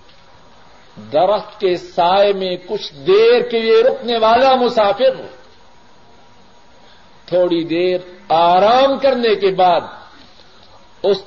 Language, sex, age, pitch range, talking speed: Urdu, male, 50-69, 175-245 Hz, 100 wpm